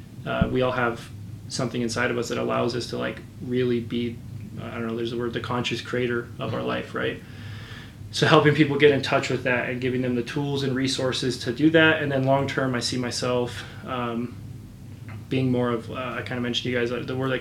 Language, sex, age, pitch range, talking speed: English, male, 20-39, 115-125 Hz, 235 wpm